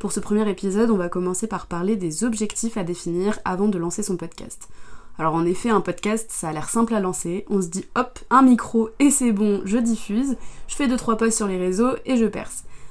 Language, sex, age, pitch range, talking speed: French, female, 20-39, 175-220 Hz, 235 wpm